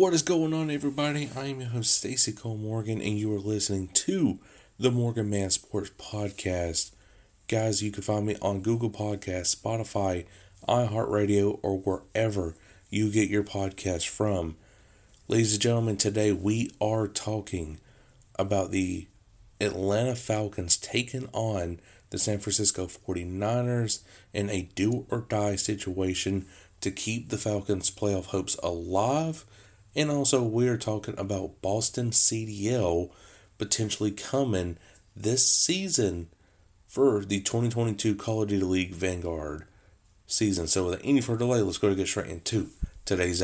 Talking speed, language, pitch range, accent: 140 wpm, English, 95-115 Hz, American